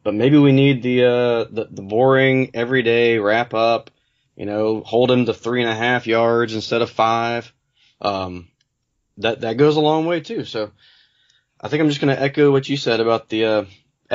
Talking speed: 200 wpm